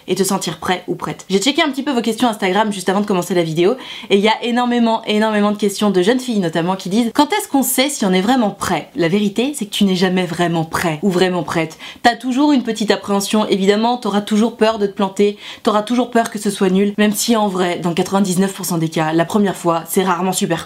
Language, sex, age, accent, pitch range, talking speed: French, female, 20-39, French, 190-250 Hz, 255 wpm